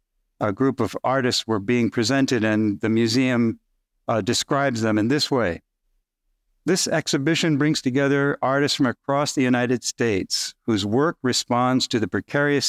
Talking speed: 150 wpm